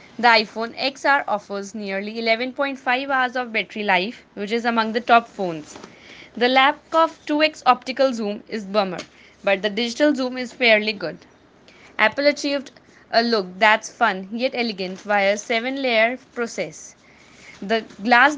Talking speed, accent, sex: 145 wpm, Indian, female